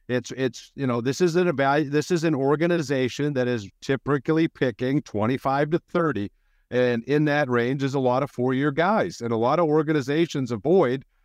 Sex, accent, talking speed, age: male, American, 185 wpm, 50-69